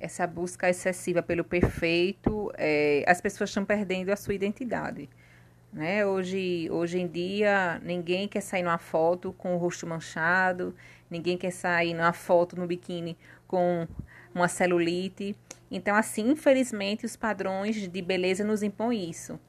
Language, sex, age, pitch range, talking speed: Portuguese, female, 30-49, 170-205 Hz, 145 wpm